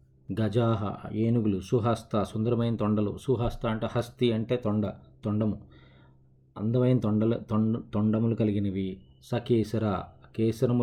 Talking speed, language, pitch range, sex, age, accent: 95 wpm, Telugu, 100-115 Hz, male, 20-39, native